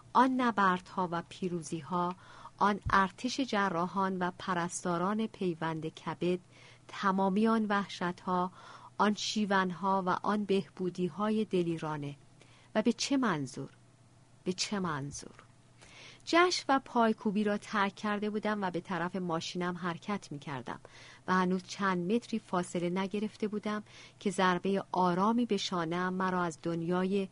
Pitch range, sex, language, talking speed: 160-205 Hz, female, Persian, 125 wpm